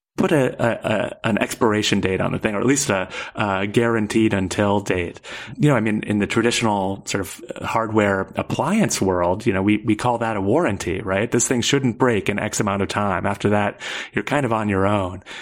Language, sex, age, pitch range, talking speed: English, male, 30-49, 100-120 Hz, 220 wpm